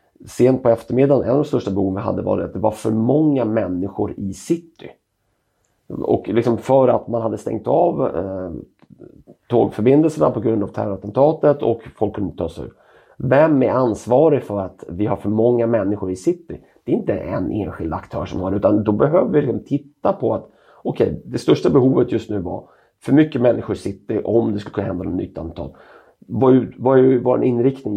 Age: 30-49